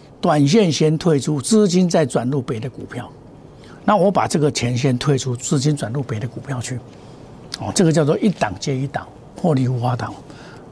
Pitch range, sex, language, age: 130-185 Hz, male, Chinese, 60-79